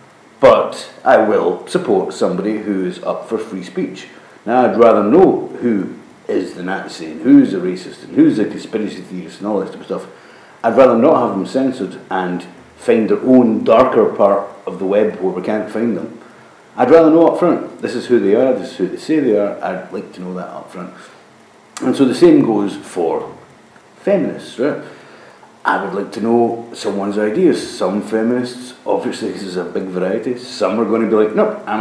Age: 50-69